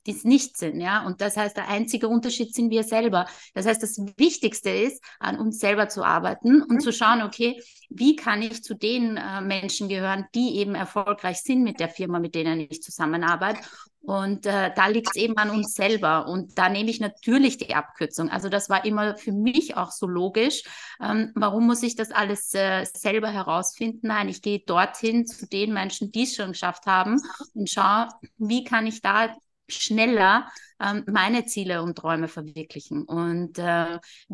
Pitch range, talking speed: 190-230 Hz, 190 wpm